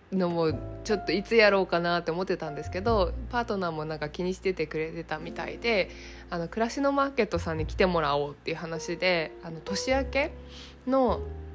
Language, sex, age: Japanese, female, 20-39